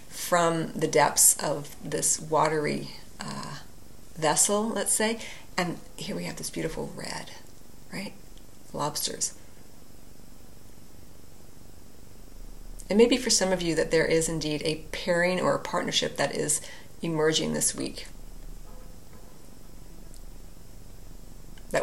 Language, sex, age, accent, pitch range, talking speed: English, female, 40-59, American, 150-185 Hz, 115 wpm